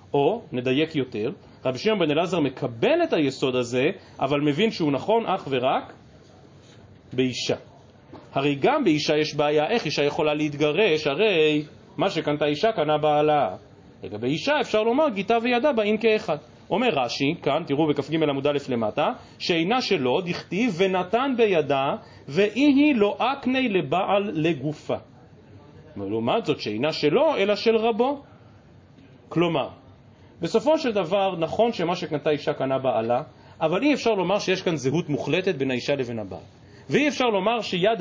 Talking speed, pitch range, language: 145 wpm, 145-225 Hz, Hebrew